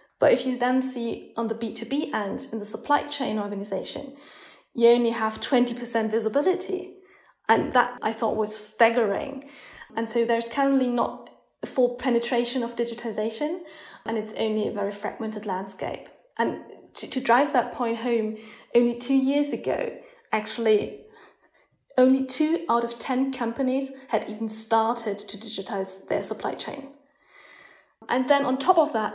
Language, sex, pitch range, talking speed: English, female, 215-255 Hz, 150 wpm